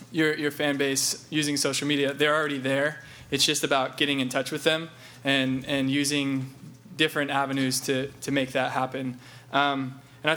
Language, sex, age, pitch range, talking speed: English, male, 20-39, 130-150 Hz, 190 wpm